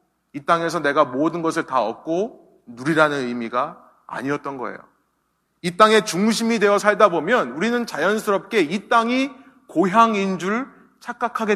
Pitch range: 190-240 Hz